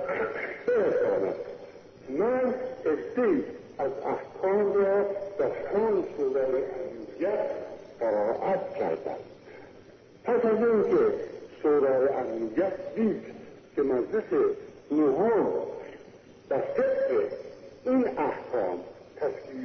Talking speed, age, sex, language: 50 wpm, 50-69, female, Persian